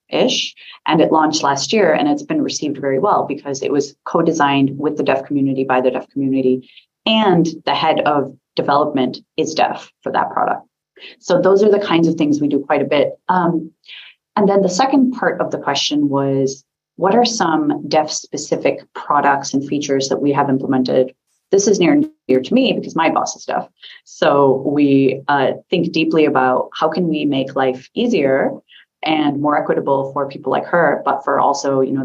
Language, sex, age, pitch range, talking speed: English, female, 30-49, 135-170 Hz, 195 wpm